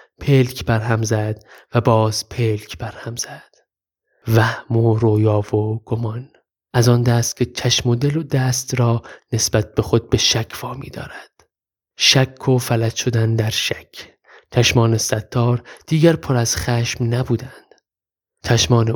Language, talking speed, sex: Persian, 140 wpm, male